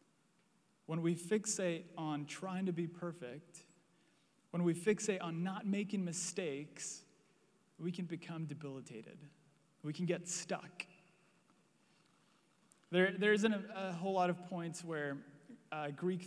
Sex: male